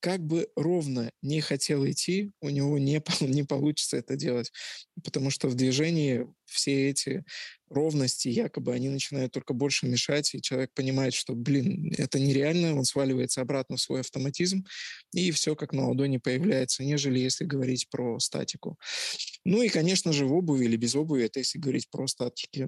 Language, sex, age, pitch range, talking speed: Russian, male, 20-39, 135-155 Hz, 170 wpm